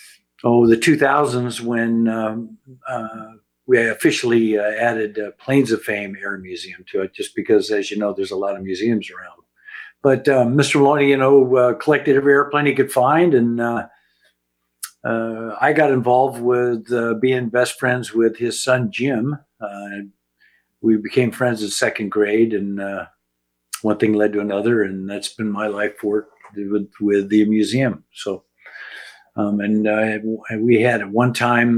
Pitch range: 105-120 Hz